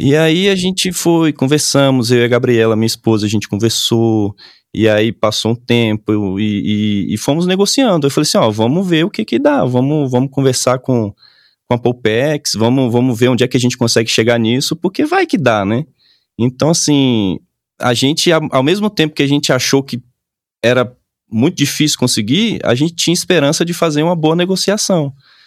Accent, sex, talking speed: Brazilian, male, 190 wpm